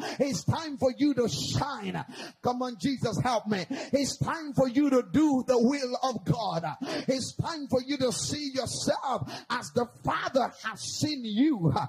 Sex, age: male, 30-49